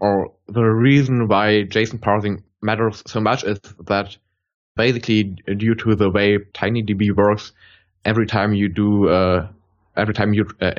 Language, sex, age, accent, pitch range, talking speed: English, male, 20-39, German, 100-115 Hz, 150 wpm